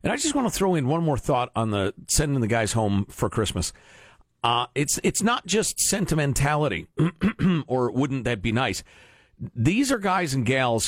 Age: 50-69